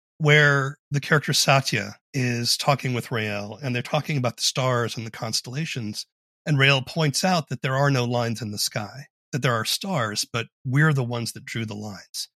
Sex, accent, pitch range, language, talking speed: male, American, 120-150 Hz, English, 200 wpm